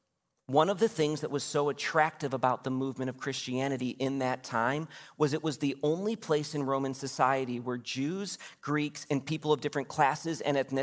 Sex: male